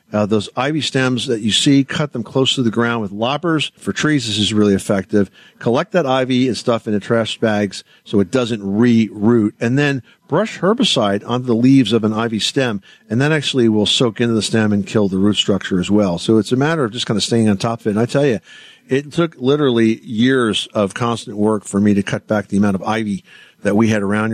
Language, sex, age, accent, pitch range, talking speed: English, male, 50-69, American, 105-130 Hz, 235 wpm